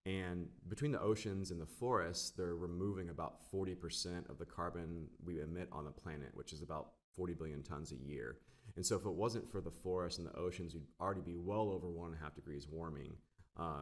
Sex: male